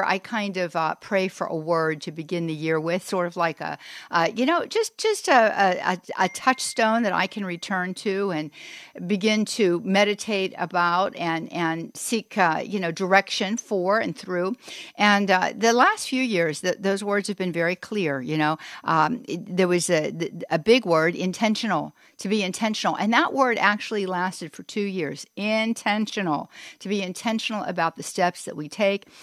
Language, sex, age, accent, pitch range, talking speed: English, female, 60-79, American, 170-210 Hz, 190 wpm